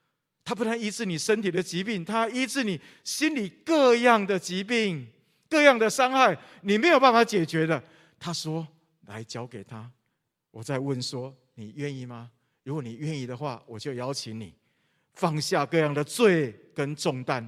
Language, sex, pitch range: Chinese, male, 120-185 Hz